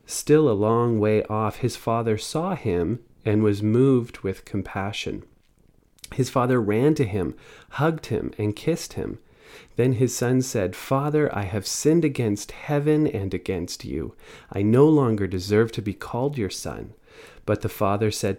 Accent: American